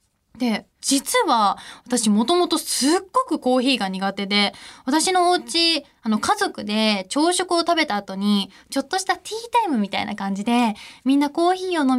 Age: 20-39